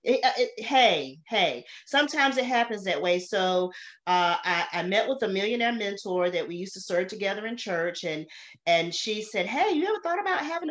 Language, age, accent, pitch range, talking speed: English, 40-59, American, 190-250 Hz, 200 wpm